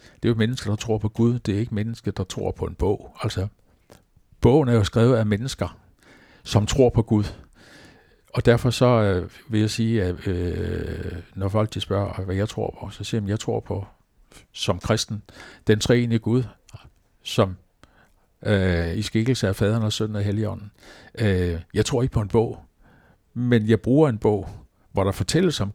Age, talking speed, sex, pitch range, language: 60-79, 190 wpm, male, 95-115 Hz, Danish